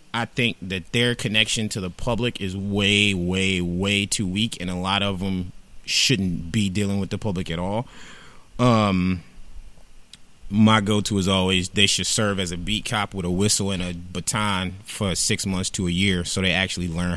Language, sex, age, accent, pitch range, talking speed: English, male, 30-49, American, 95-125 Hz, 190 wpm